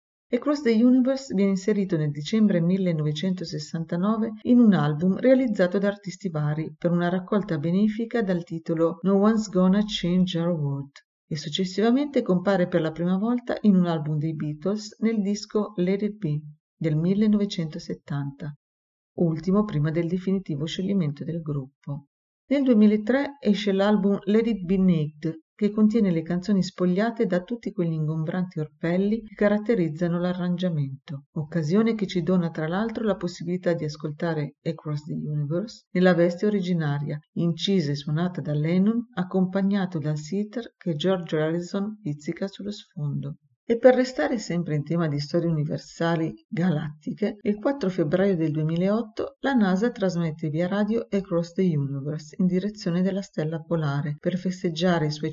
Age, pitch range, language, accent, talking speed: 50-69, 160-205 Hz, Italian, native, 150 wpm